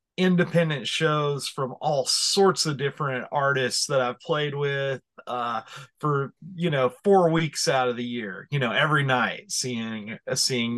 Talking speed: 155 wpm